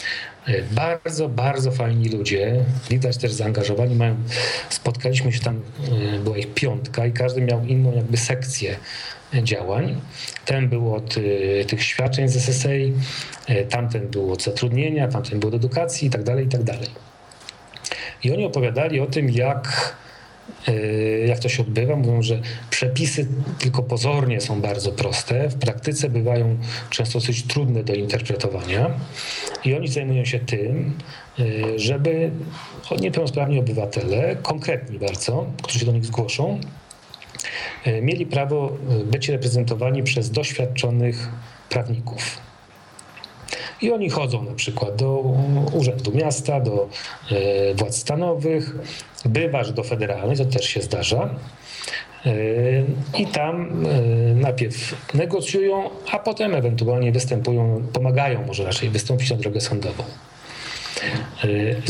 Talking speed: 125 wpm